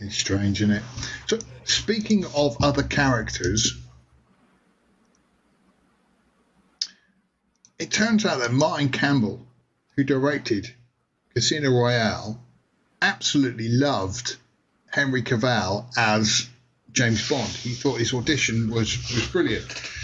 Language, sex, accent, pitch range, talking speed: English, male, British, 115-150 Hz, 100 wpm